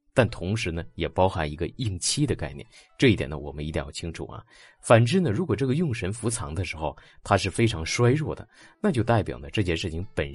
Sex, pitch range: male, 80-120 Hz